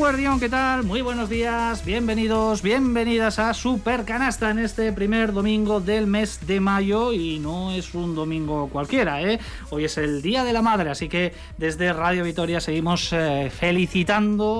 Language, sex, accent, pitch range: Spanish, male, Spanish, 170-220 Hz